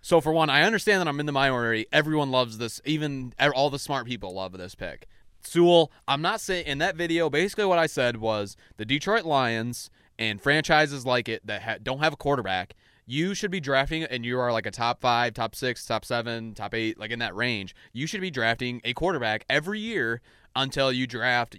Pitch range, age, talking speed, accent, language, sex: 110-145 Hz, 20-39, 215 wpm, American, English, male